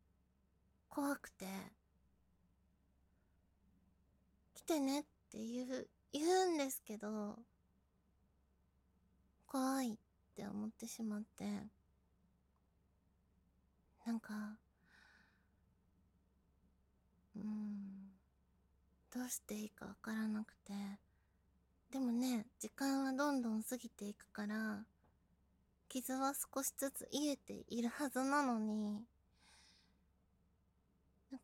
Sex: female